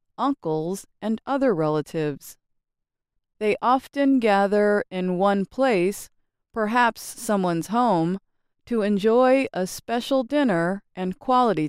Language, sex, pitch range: English, female, 165-260 Hz